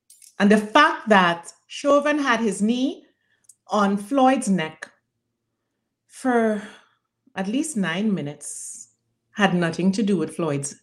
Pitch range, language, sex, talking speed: 180-260 Hz, English, female, 120 wpm